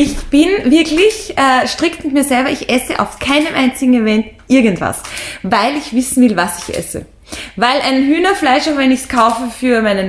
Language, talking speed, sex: German, 190 wpm, female